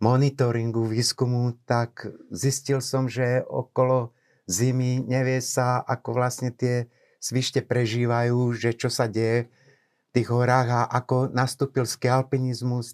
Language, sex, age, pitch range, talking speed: Slovak, male, 60-79, 115-130 Hz, 120 wpm